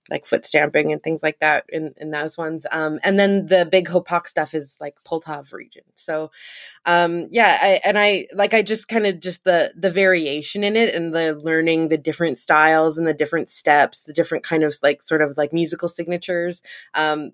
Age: 20-39